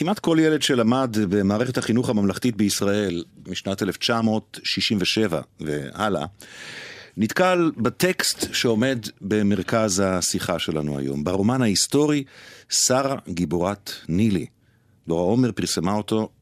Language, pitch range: Hebrew, 90-115 Hz